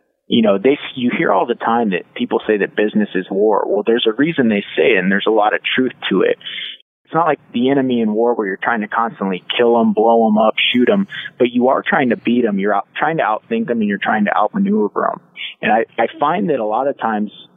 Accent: American